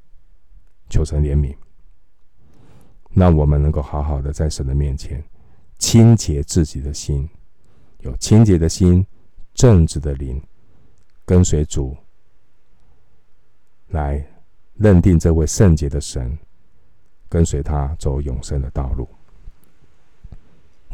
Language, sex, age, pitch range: Chinese, male, 50-69, 75-90 Hz